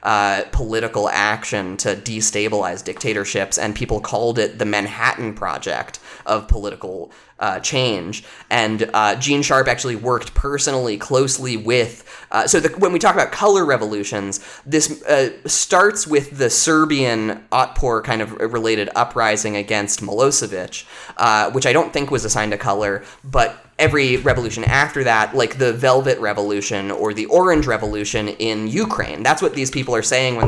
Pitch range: 105-135 Hz